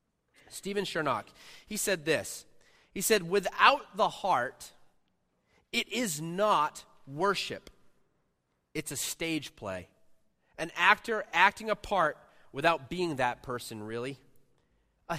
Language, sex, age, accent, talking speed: English, male, 30-49, American, 115 wpm